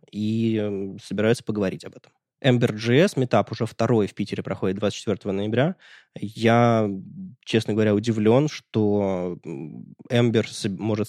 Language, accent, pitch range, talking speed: Russian, native, 100-120 Hz, 115 wpm